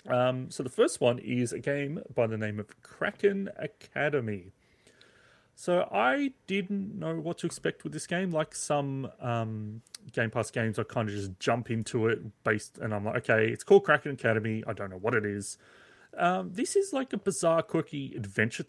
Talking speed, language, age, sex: 195 wpm, English, 30-49, male